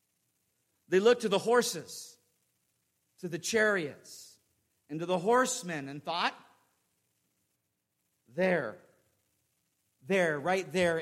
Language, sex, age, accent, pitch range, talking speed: English, male, 50-69, American, 175-235 Hz, 100 wpm